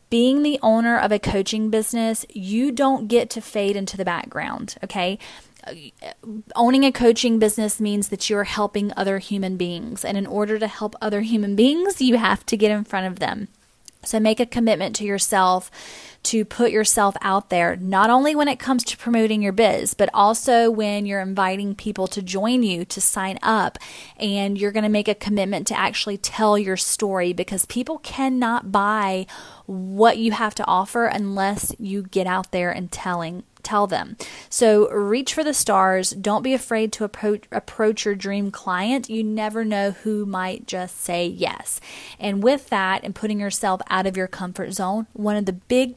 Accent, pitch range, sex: American, 195-225 Hz, female